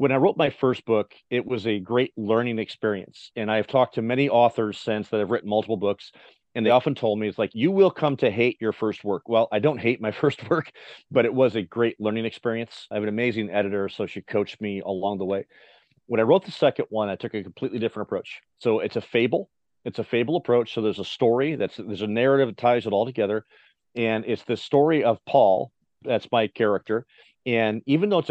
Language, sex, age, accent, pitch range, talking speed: English, male, 40-59, American, 105-125 Hz, 235 wpm